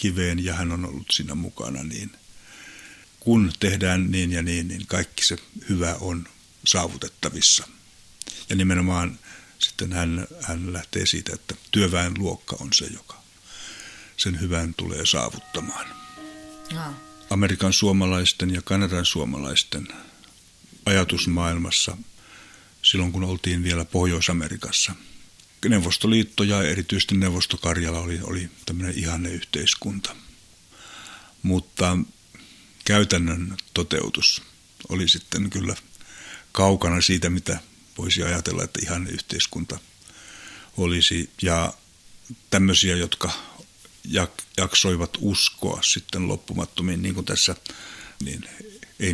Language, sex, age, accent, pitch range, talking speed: Finnish, male, 60-79, native, 85-95 Hz, 95 wpm